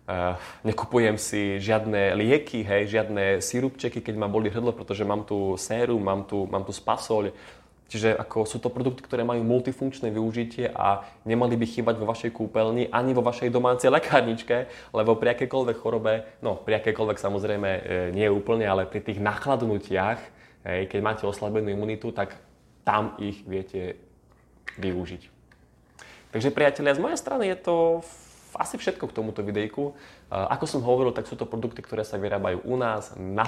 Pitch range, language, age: 100-125 Hz, Slovak, 20-39